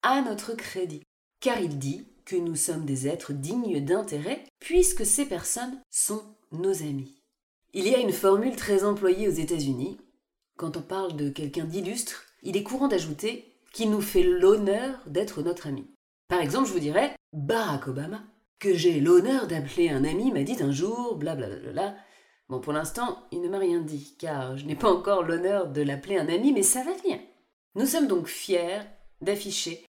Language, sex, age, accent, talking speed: French, female, 30-49, French, 185 wpm